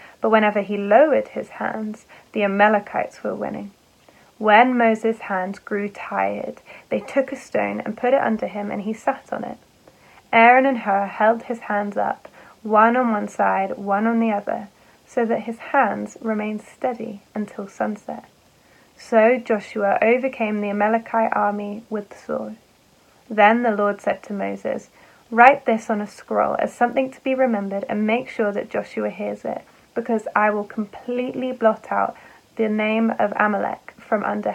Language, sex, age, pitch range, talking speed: English, female, 10-29, 205-245 Hz, 165 wpm